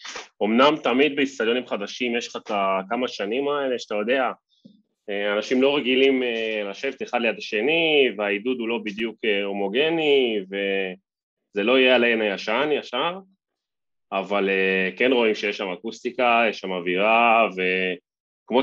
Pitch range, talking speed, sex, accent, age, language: 100-130 Hz, 120 wpm, male, Italian, 20-39, Hebrew